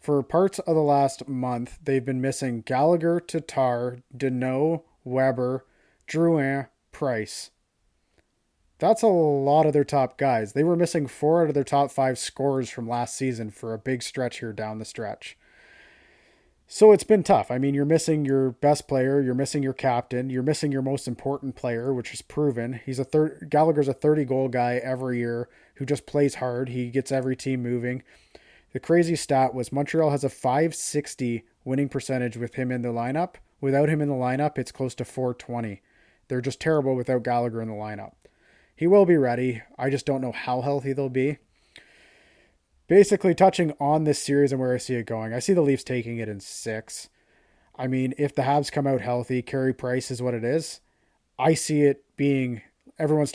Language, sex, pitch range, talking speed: English, male, 125-145 Hz, 190 wpm